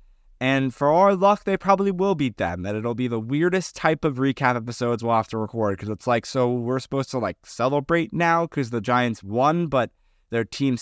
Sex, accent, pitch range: male, American, 115-145 Hz